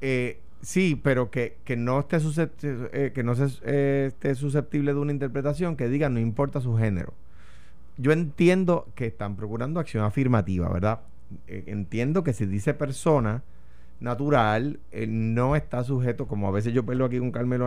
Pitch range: 105-145 Hz